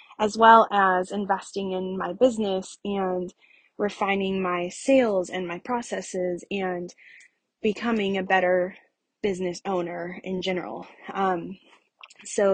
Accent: American